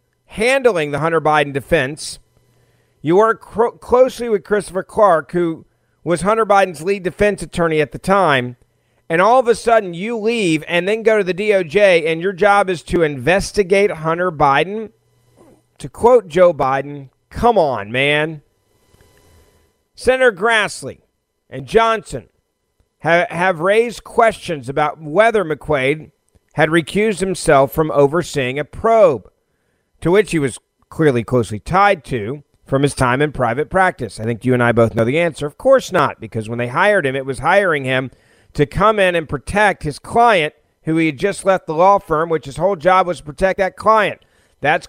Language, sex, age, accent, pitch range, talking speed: English, male, 40-59, American, 135-200 Hz, 170 wpm